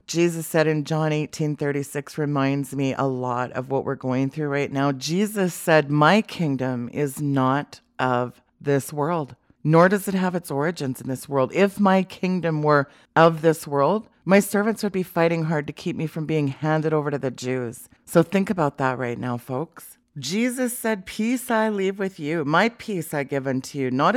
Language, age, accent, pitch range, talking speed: English, 40-59, American, 145-195 Hz, 195 wpm